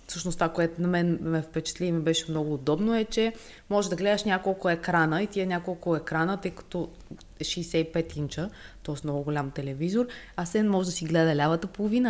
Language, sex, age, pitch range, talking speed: Bulgarian, female, 20-39, 155-195 Hz, 195 wpm